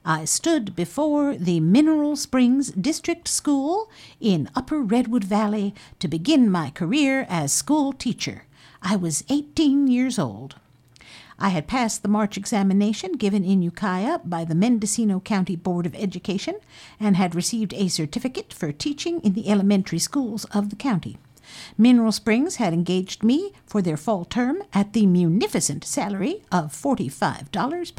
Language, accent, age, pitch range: English, American, 50-69, 180-260 Hz